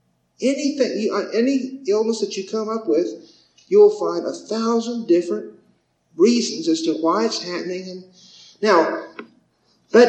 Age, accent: 50-69, American